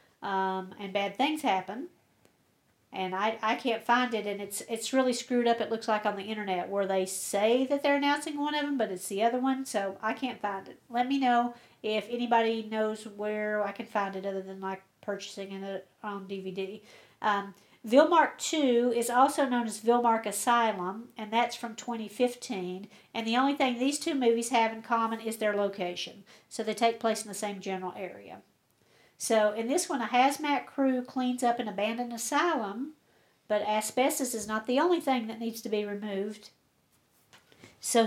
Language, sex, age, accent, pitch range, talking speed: English, female, 50-69, American, 200-250 Hz, 190 wpm